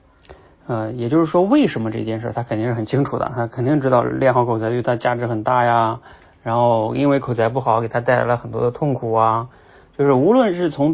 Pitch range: 110-135 Hz